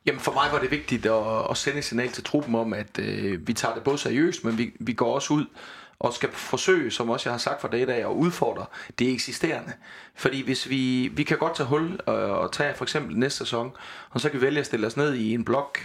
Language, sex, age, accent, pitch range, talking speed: Danish, male, 30-49, native, 115-150 Hz, 260 wpm